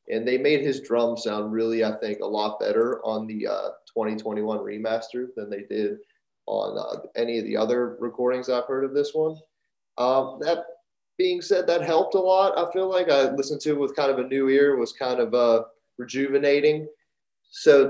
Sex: male